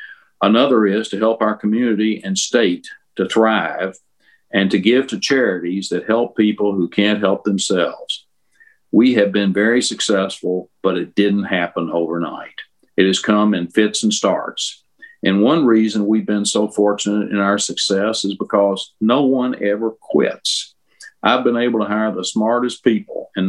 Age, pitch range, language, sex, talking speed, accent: 50-69, 100-115 Hz, English, male, 165 wpm, American